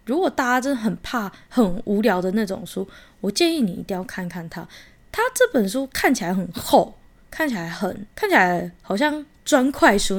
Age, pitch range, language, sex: 20-39, 190-255 Hz, Chinese, female